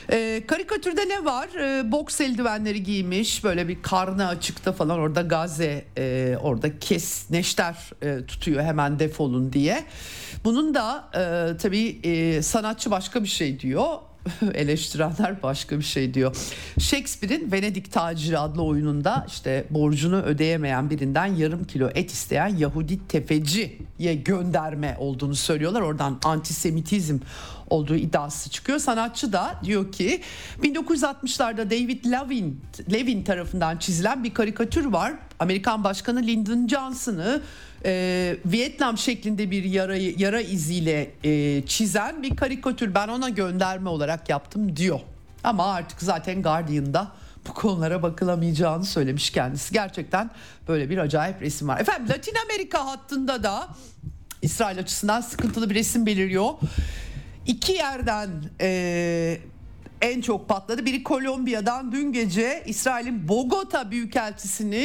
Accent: native